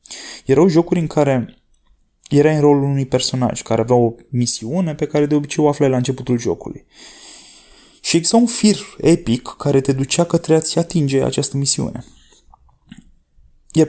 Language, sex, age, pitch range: Romanian, male, 20-39, 130-170 Hz